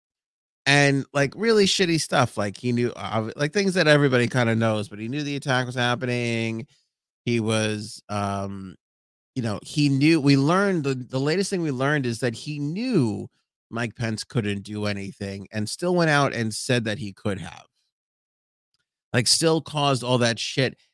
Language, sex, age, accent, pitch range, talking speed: English, male, 30-49, American, 110-145 Hz, 180 wpm